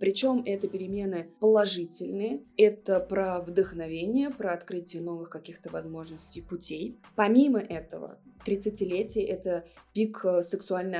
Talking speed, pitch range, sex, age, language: 105 wpm, 170-220 Hz, female, 20-39, Russian